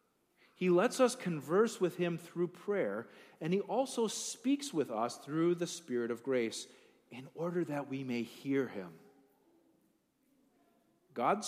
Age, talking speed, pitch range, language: 40-59, 140 wpm, 135-200 Hz, English